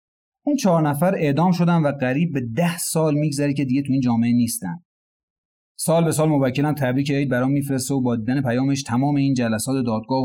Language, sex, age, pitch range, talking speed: Persian, male, 30-49, 130-175 Hz, 195 wpm